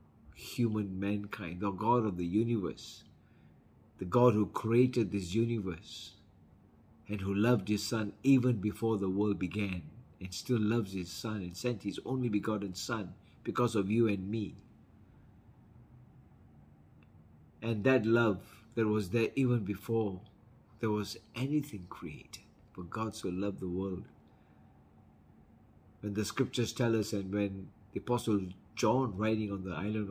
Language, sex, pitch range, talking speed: English, male, 100-120 Hz, 140 wpm